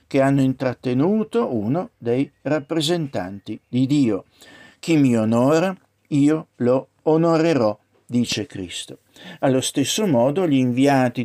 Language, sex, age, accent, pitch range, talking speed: Italian, male, 60-79, native, 125-155 Hz, 110 wpm